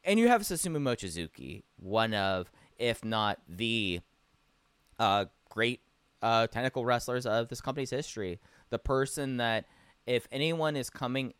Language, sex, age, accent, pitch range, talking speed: English, male, 20-39, American, 95-135 Hz, 135 wpm